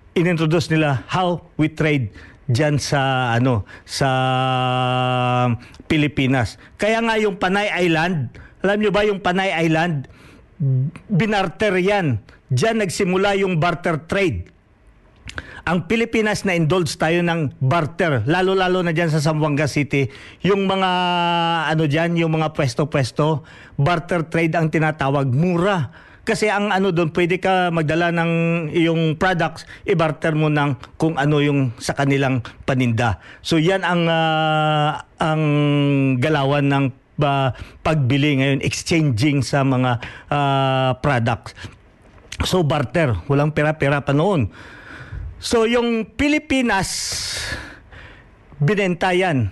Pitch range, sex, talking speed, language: 135-175 Hz, male, 120 wpm, Filipino